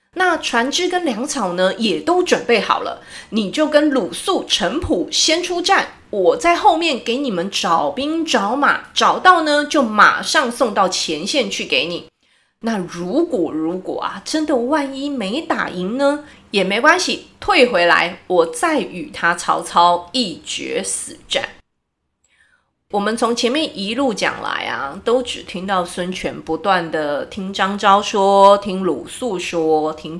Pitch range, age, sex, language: 185-310 Hz, 30-49, female, Chinese